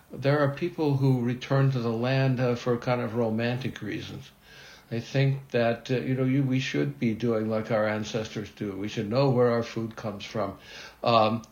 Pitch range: 110-135 Hz